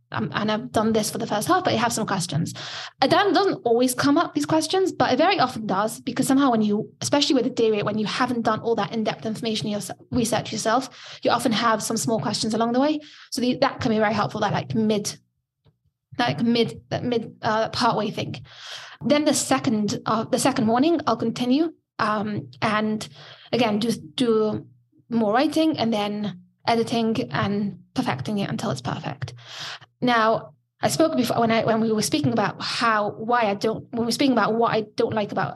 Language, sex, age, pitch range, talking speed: English, female, 20-39, 205-240 Hz, 210 wpm